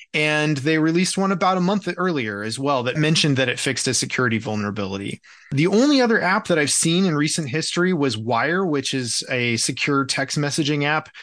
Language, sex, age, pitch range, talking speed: English, male, 30-49, 135-195 Hz, 200 wpm